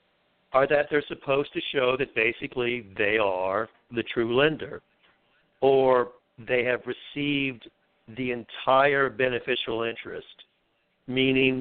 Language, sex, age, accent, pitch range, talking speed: English, male, 60-79, American, 120-145 Hz, 115 wpm